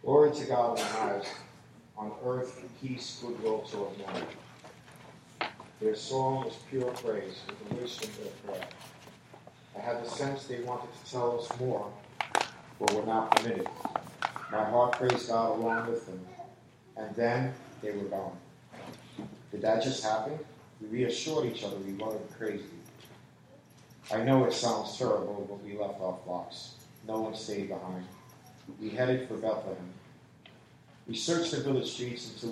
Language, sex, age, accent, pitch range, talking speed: English, male, 50-69, American, 105-125 Hz, 155 wpm